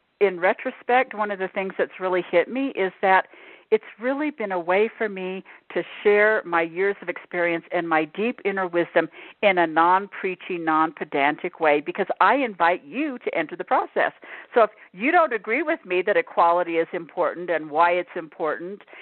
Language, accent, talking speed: English, American, 185 wpm